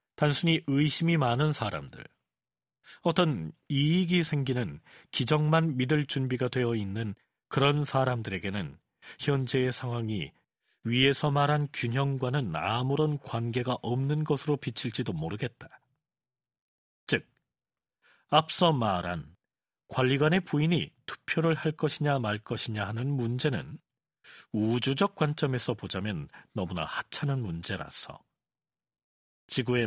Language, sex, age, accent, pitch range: Korean, male, 40-59, native, 120-150 Hz